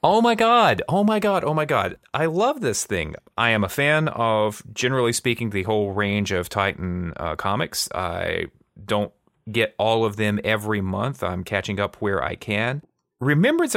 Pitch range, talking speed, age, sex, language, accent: 100-135 Hz, 185 wpm, 30-49, male, English, American